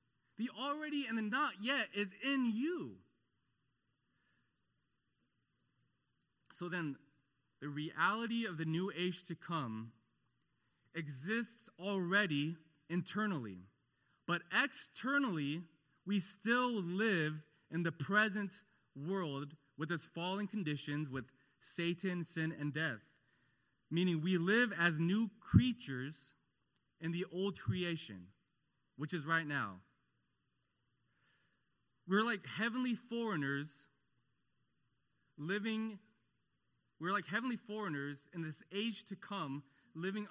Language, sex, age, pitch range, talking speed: English, male, 20-39, 135-200 Hz, 105 wpm